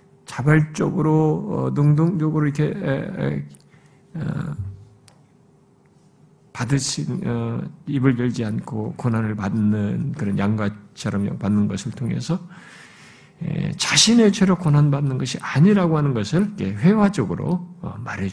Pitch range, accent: 110-180 Hz, native